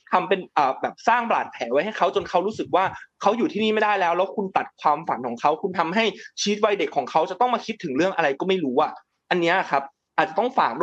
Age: 20-39